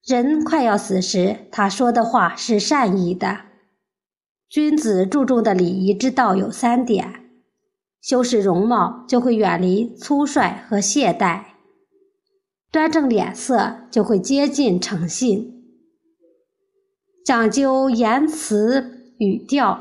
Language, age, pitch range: Chinese, 50-69, 205-280 Hz